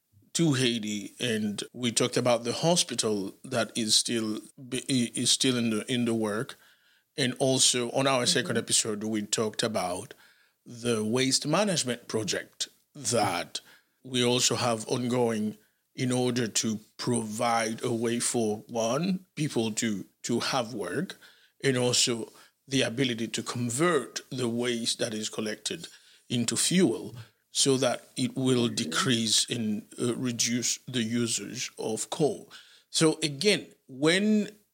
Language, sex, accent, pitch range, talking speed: English, male, Nigerian, 115-140 Hz, 135 wpm